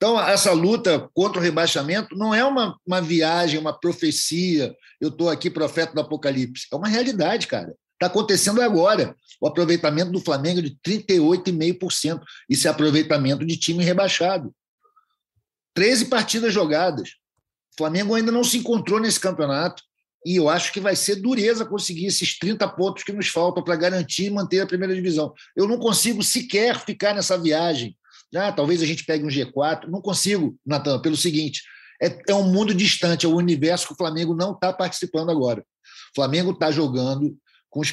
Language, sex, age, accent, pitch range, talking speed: Portuguese, male, 50-69, Brazilian, 155-195 Hz, 170 wpm